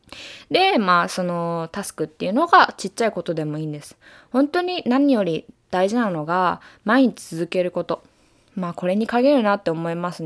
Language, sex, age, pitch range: Japanese, female, 20-39, 175-265 Hz